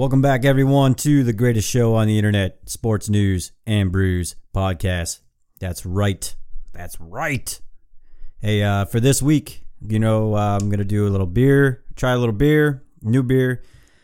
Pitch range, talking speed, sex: 95-120 Hz, 170 wpm, male